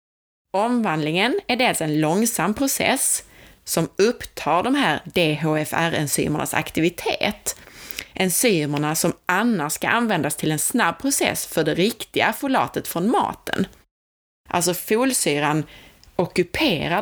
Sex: female